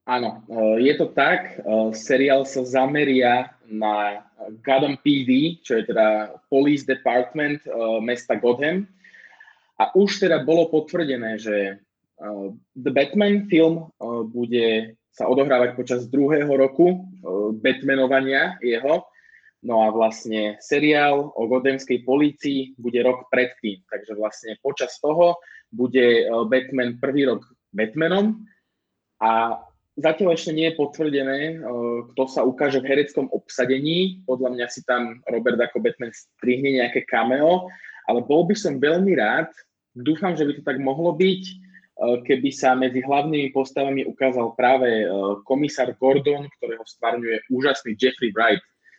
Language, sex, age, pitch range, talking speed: Slovak, male, 20-39, 120-150 Hz, 125 wpm